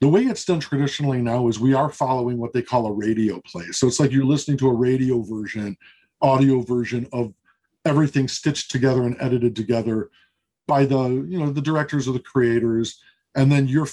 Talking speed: 200 wpm